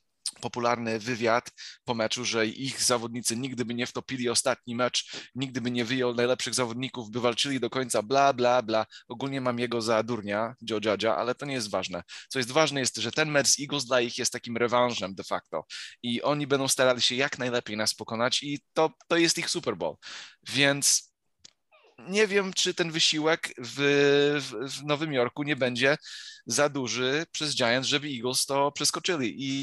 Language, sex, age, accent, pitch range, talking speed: Polish, male, 20-39, native, 120-140 Hz, 180 wpm